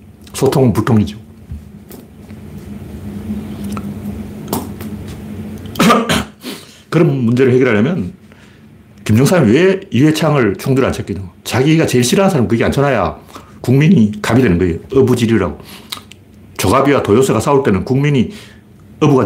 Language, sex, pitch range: Korean, male, 105-145 Hz